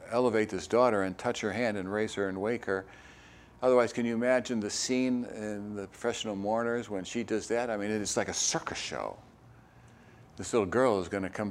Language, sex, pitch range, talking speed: English, male, 105-130 Hz, 215 wpm